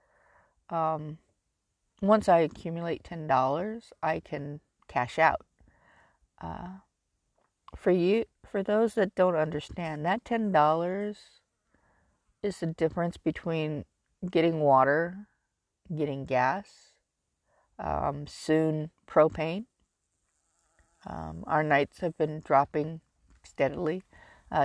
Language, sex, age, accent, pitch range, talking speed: English, female, 50-69, American, 140-175 Hz, 95 wpm